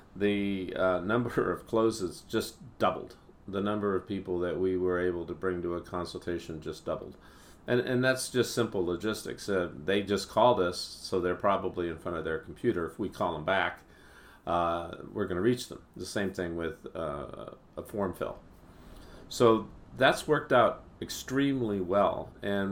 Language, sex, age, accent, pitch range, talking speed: English, male, 50-69, American, 90-105 Hz, 175 wpm